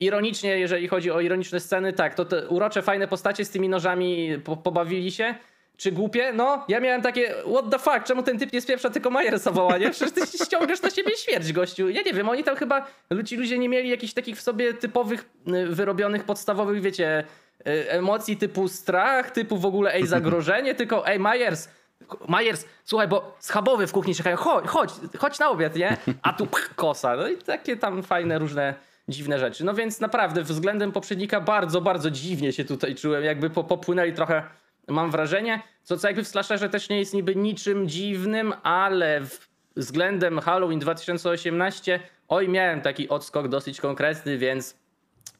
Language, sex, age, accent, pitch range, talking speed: Polish, male, 20-39, native, 170-220 Hz, 175 wpm